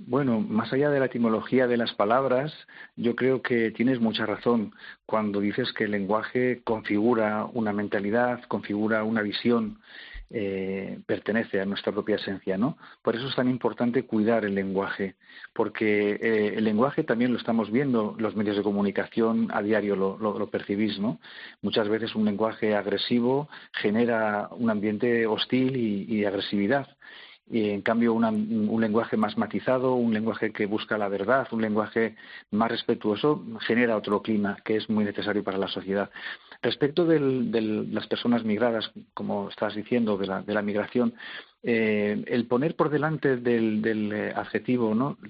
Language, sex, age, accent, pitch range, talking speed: Spanish, male, 40-59, Spanish, 105-120 Hz, 165 wpm